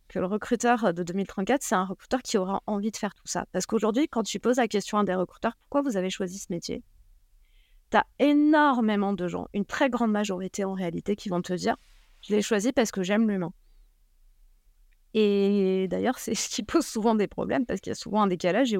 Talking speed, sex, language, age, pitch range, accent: 235 wpm, female, French, 30-49, 190-230 Hz, French